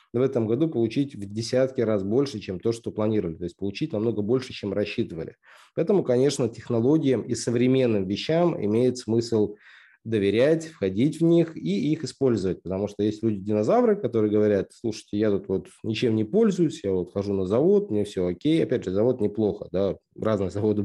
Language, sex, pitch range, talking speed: Russian, male, 105-130 Hz, 175 wpm